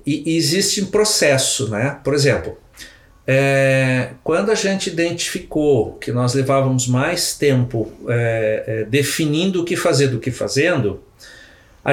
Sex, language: male, Portuguese